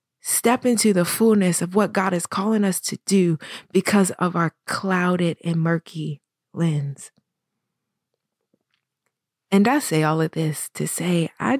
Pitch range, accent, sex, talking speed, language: 170-225 Hz, American, female, 145 wpm, English